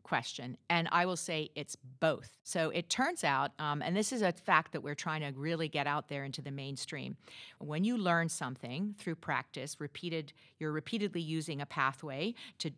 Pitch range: 145-190 Hz